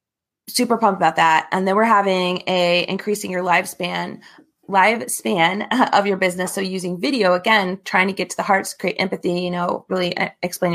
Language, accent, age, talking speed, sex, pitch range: English, American, 20-39, 180 wpm, female, 180-210 Hz